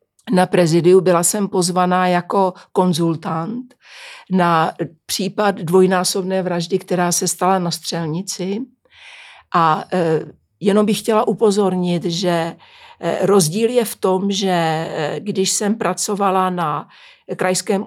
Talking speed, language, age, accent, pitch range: 105 wpm, Czech, 60-79, native, 175-200 Hz